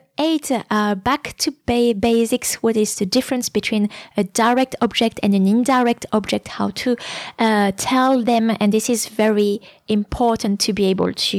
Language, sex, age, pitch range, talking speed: English, female, 20-39, 190-235 Hz, 165 wpm